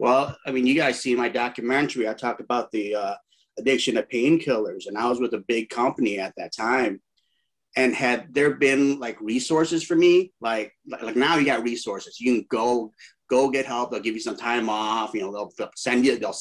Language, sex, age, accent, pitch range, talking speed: English, male, 30-49, American, 120-165 Hz, 220 wpm